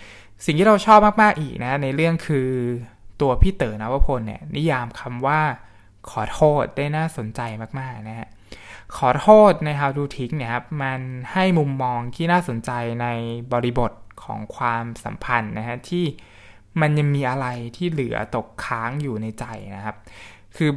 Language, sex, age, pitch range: Thai, male, 20-39, 110-145 Hz